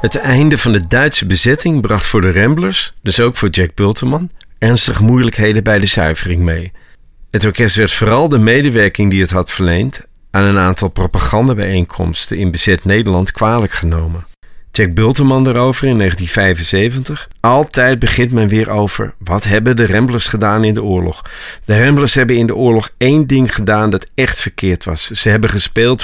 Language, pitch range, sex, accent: Dutch, 95-125 Hz, male, Dutch